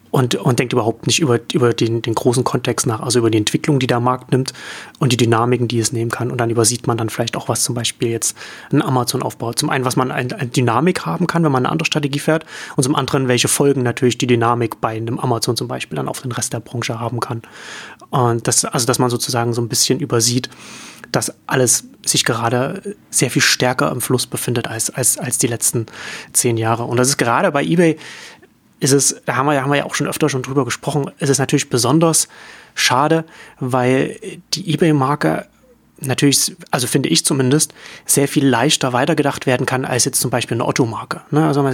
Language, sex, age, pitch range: German, male, 30-49, 125-150 Hz